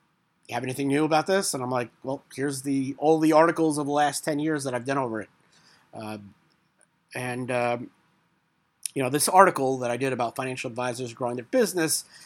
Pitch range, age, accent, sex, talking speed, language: 125-160 Hz, 30-49, American, male, 200 wpm, English